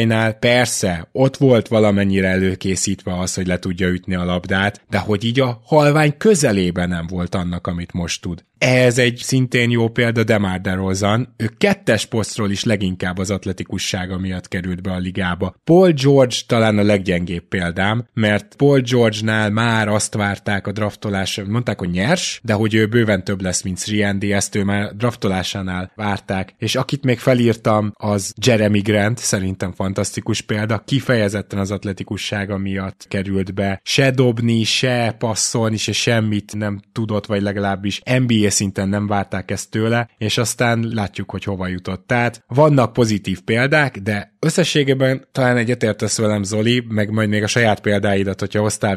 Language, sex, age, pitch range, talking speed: Hungarian, male, 20-39, 95-120 Hz, 160 wpm